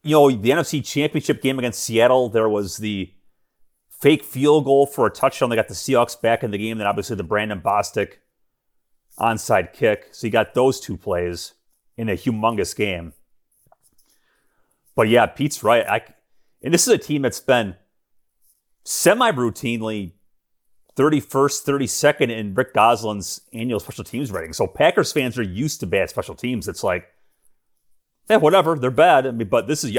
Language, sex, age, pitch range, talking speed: English, male, 30-49, 105-140 Hz, 165 wpm